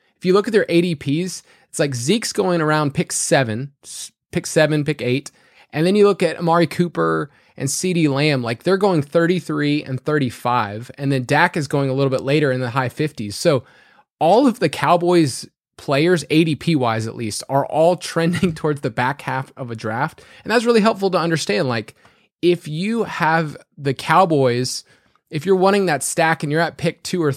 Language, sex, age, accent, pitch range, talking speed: English, male, 20-39, American, 135-175 Hz, 195 wpm